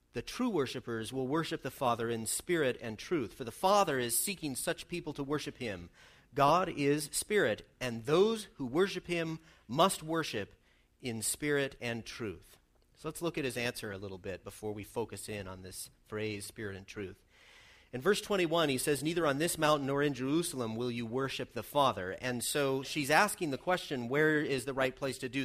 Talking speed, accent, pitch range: 200 wpm, American, 120-155 Hz